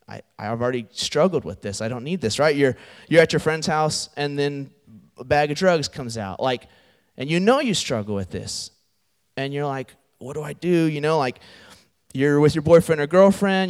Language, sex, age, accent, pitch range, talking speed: English, male, 30-49, American, 135-210 Hz, 215 wpm